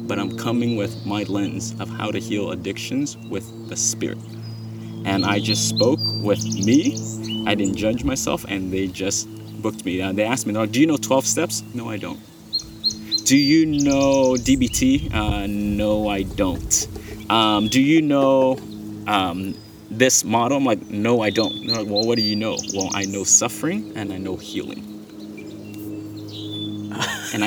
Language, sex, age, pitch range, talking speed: English, male, 30-49, 105-120 Hz, 165 wpm